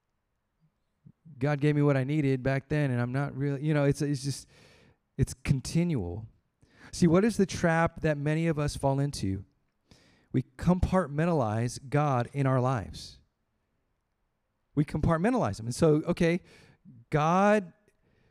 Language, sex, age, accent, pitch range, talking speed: English, male, 40-59, American, 125-170 Hz, 140 wpm